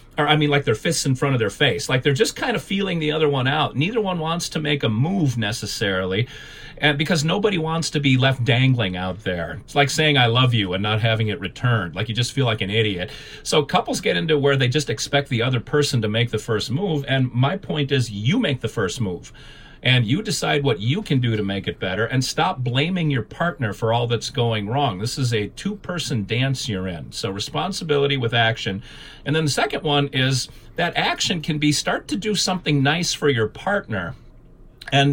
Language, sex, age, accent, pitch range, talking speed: English, male, 40-59, American, 110-145 Hz, 225 wpm